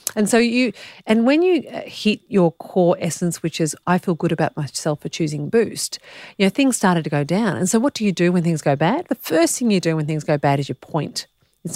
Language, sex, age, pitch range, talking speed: English, female, 40-59, 150-205 Hz, 255 wpm